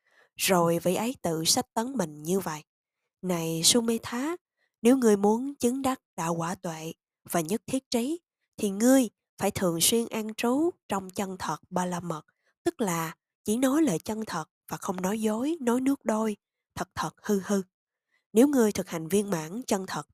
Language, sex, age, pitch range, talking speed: Vietnamese, female, 20-39, 175-240 Hz, 190 wpm